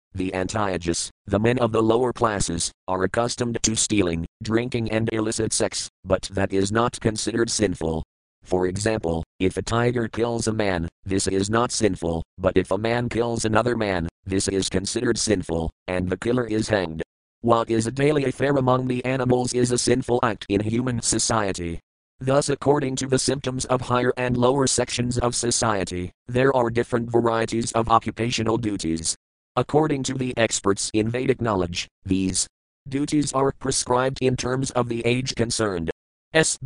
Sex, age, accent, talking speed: male, 50-69, American, 165 wpm